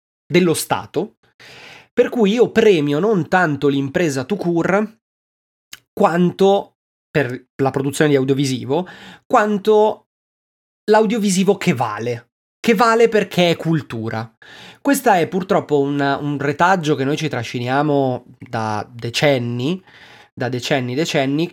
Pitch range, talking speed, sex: 125-160 Hz, 115 wpm, male